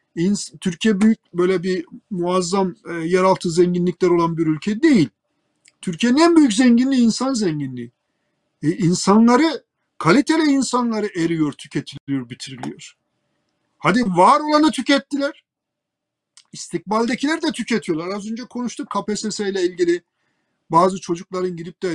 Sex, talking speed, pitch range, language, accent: male, 115 wpm, 165-225 Hz, Turkish, native